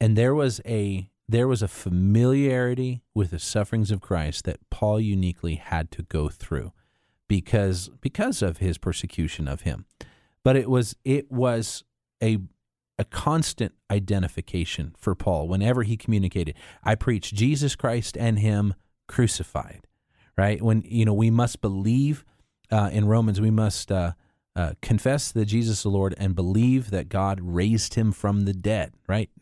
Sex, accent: male, American